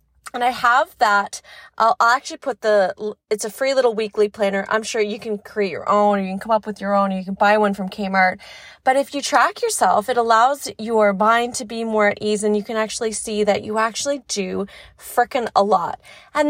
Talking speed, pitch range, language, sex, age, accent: 235 wpm, 205-250 Hz, English, female, 30-49, American